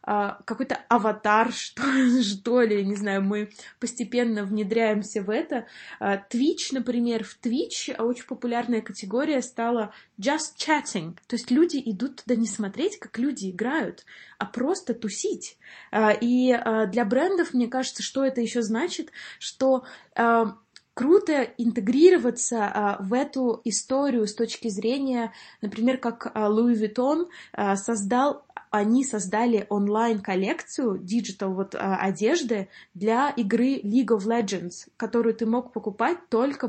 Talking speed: 135 wpm